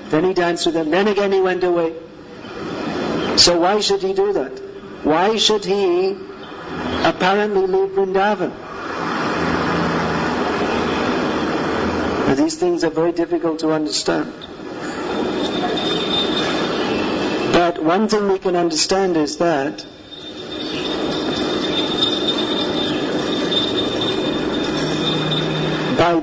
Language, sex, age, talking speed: English, male, 50-69, 85 wpm